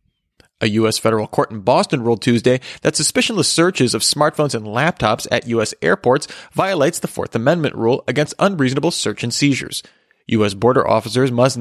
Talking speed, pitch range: 165 wpm, 115-150 Hz